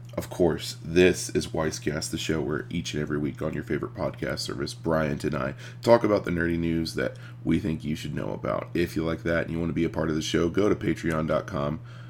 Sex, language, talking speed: male, English, 245 wpm